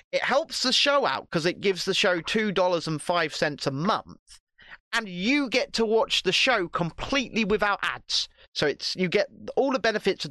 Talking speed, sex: 180 wpm, male